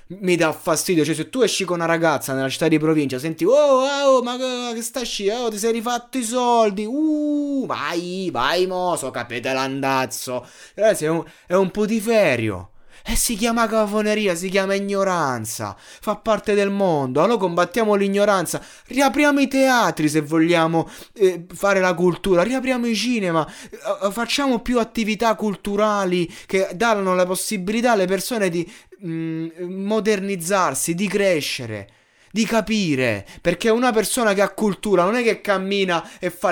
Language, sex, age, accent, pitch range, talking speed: Italian, male, 20-39, native, 150-220 Hz, 155 wpm